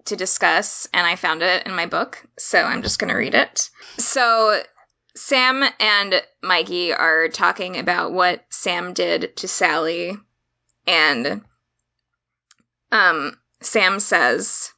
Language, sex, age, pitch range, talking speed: English, female, 20-39, 180-220 Hz, 125 wpm